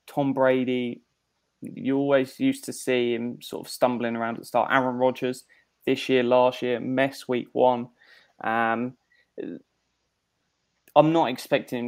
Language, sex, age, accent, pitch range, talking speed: English, male, 20-39, British, 120-140 Hz, 145 wpm